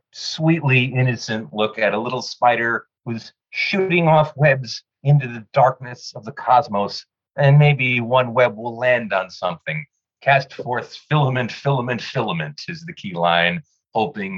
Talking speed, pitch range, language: 145 wpm, 105-150 Hz, English